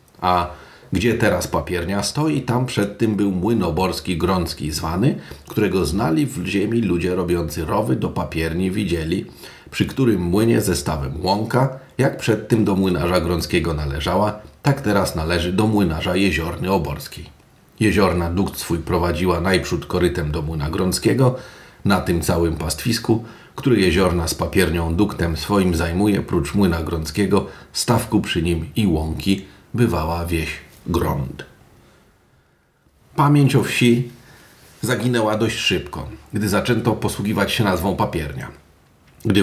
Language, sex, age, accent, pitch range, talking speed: Polish, male, 40-59, native, 85-110 Hz, 130 wpm